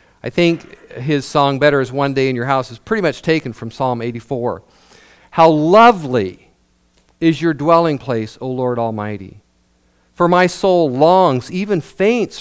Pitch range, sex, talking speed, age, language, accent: 110-165 Hz, male, 160 wpm, 50-69, English, American